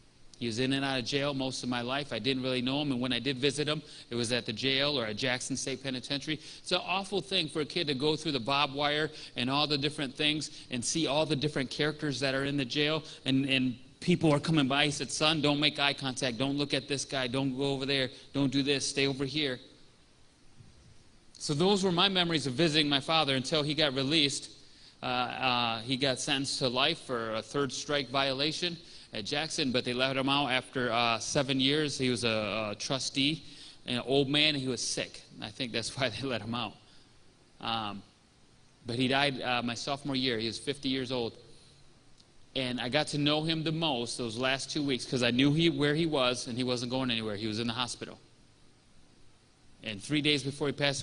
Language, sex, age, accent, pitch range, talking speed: English, male, 30-49, American, 125-150 Hz, 225 wpm